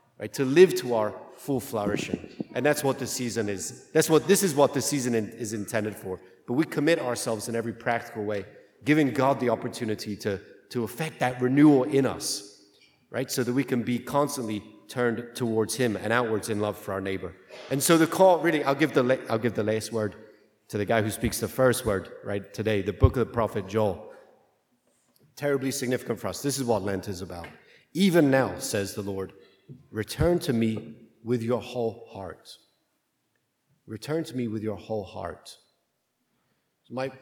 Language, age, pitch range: English, 30-49, 105-135 Hz